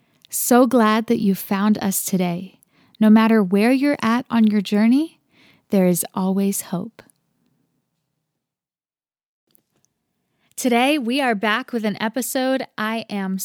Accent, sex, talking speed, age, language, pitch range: American, female, 125 wpm, 20-39, English, 195-240 Hz